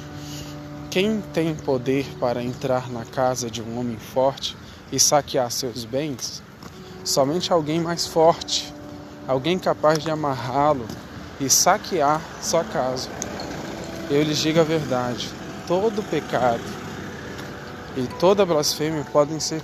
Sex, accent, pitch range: male, Brazilian, 125-165 Hz